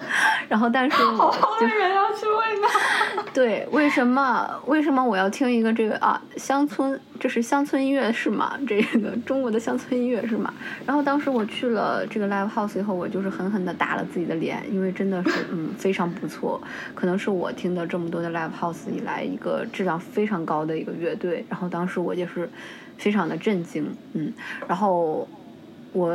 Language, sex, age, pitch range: Chinese, female, 20-39, 180-250 Hz